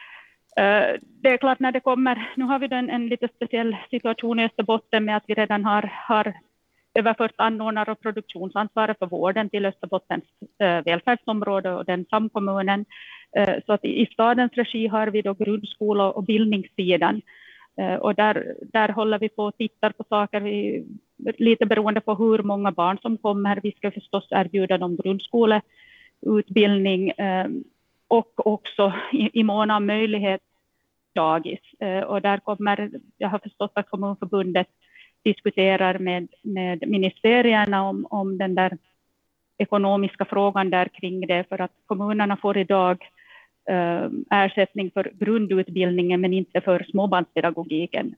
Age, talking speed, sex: 30-49, 145 wpm, female